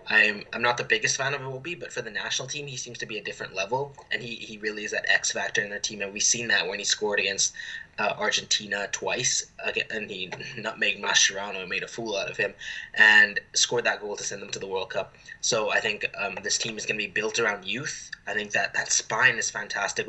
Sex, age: male, 10-29